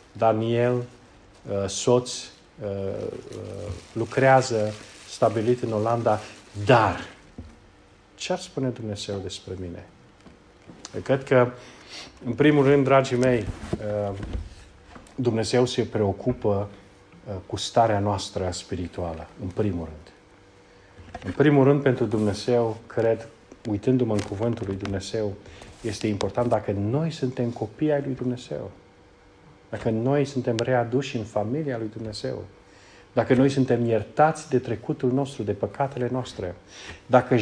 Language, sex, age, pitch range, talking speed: Romanian, male, 40-59, 100-125 Hz, 110 wpm